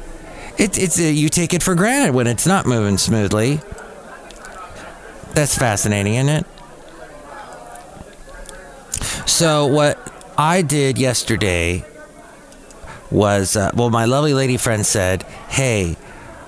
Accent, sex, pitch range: American, male, 105-135 Hz